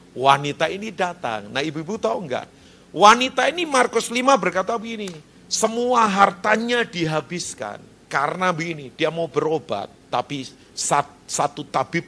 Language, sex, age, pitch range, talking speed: Indonesian, male, 40-59, 170-245 Hz, 120 wpm